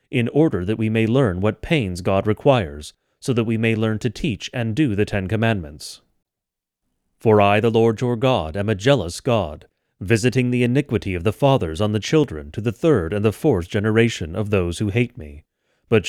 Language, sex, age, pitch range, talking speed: English, male, 30-49, 100-120 Hz, 200 wpm